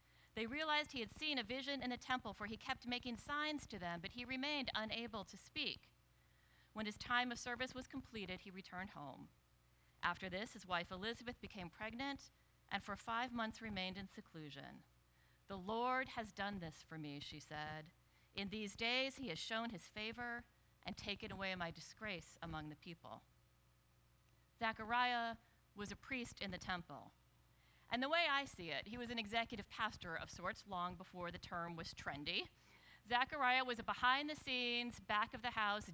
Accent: American